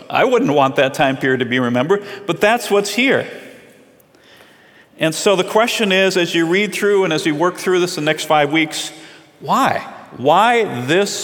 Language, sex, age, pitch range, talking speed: English, male, 40-59, 135-180 Hz, 185 wpm